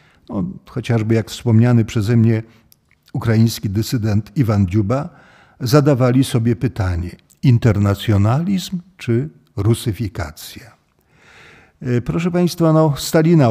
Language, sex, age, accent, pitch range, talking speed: Polish, male, 50-69, native, 105-130 Hz, 80 wpm